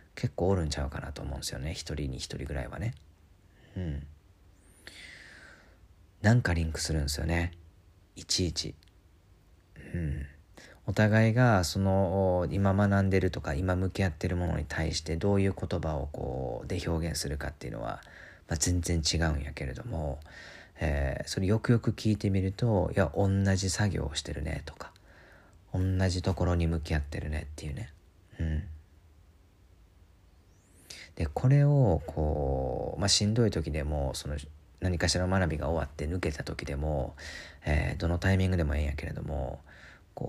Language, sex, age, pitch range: Japanese, male, 40-59, 80-95 Hz